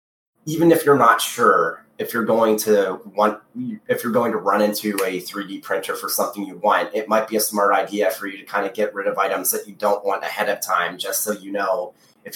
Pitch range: 95-145 Hz